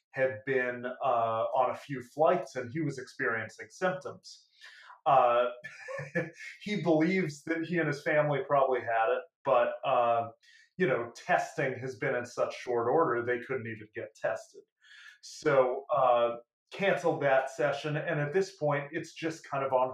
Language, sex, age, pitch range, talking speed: English, male, 30-49, 125-165 Hz, 160 wpm